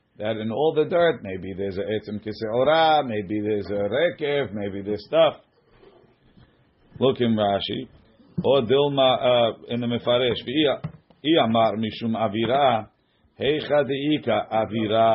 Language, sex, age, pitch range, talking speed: English, male, 50-69, 110-125 Hz, 130 wpm